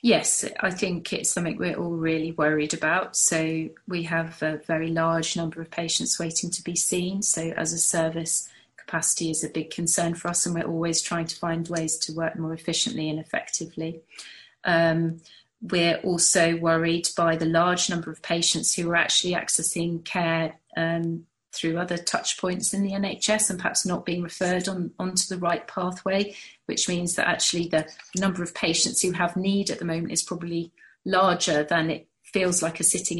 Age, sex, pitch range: 30-49, female, 165-185 Hz